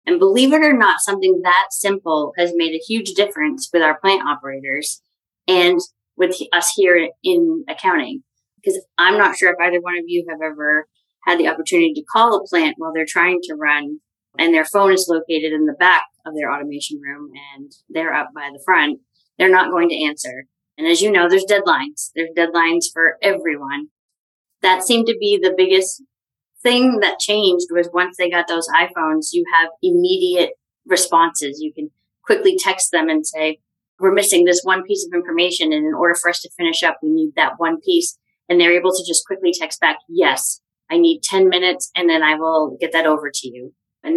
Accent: American